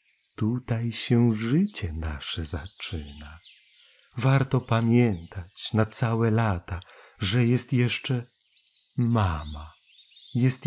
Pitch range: 90-120 Hz